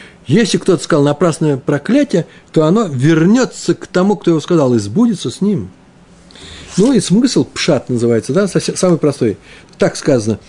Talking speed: 155 wpm